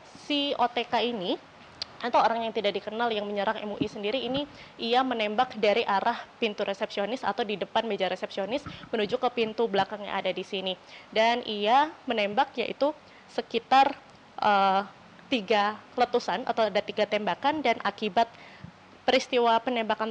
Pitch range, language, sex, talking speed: 205-240 Hz, Indonesian, female, 145 wpm